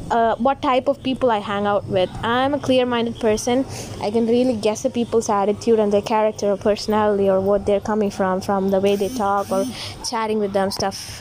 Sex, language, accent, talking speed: female, English, Indian, 220 wpm